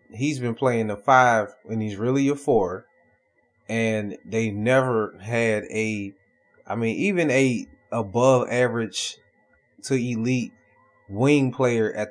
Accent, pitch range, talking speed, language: American, 110-130 Hz, 130 wpm, English